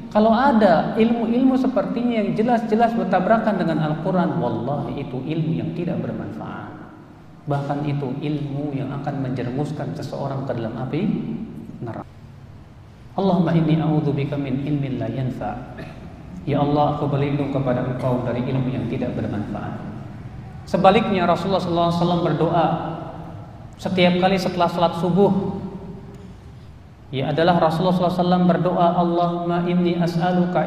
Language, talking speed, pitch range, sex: Indonesian, 120 wpm, 140-190 Hz, male